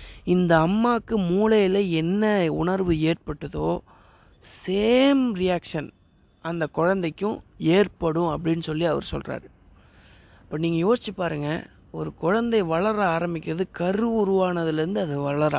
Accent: native